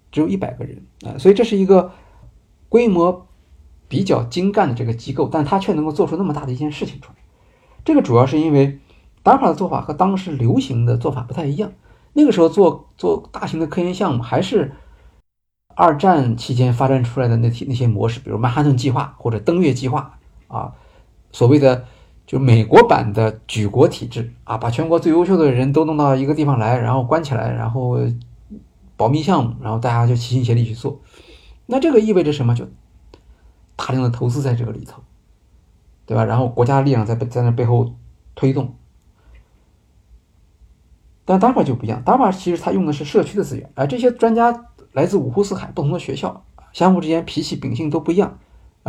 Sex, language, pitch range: male, Chinese, 115-170 Hz